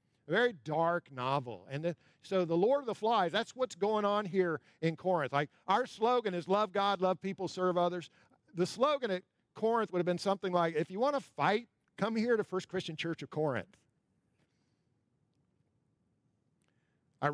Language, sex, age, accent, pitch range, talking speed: English, male, 50-69, American, 140-190 Hz, 175 wpm